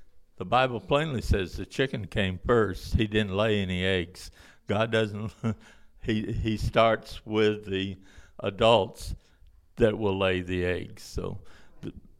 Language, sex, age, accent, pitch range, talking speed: English, male, 60-79, American, 95-115 Hz, 140 wpm